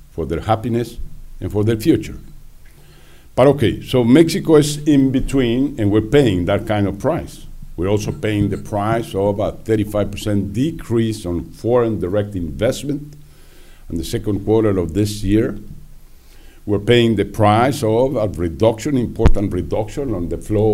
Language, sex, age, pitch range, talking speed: English, male, 60-79, 95-125 Hz, 155 wpm